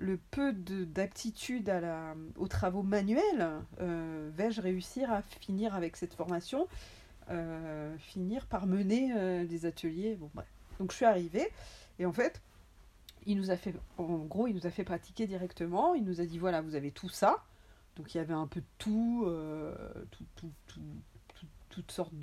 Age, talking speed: 40-59, 185 wpm